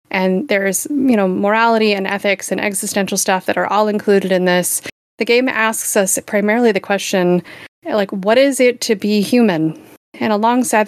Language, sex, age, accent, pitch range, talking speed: English, female, 30-49, American, 185-215 Hz, 175 wpm